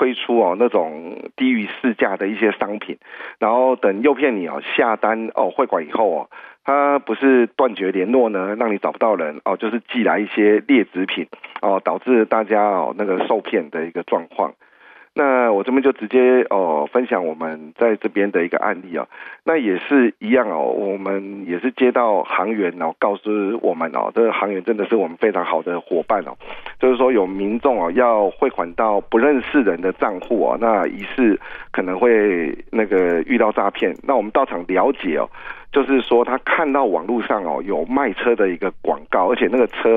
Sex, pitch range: male, 100-130 Hz